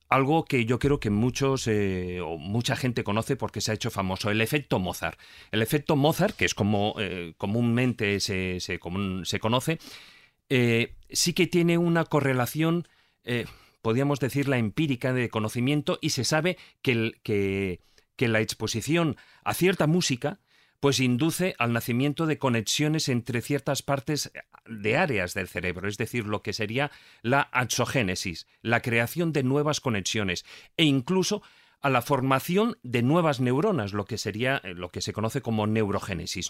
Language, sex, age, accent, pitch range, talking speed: Spanish, male, 40-59, Spanish, 110-145 Hz, 165 wpm